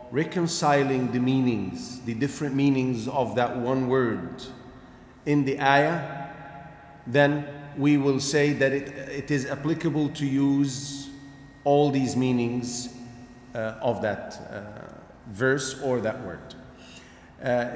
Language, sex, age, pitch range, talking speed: English, male, 40-59, 125-155 Hz, 120 wpm